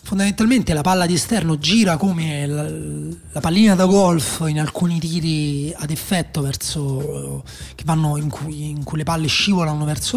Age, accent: 30-49, native